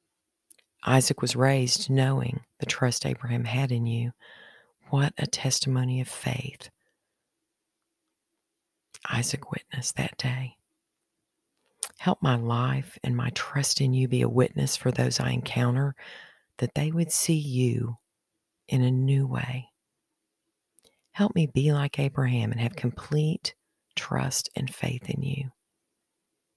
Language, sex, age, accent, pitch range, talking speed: English, female, 40-59, American, 120-145 Hz, 125 wpm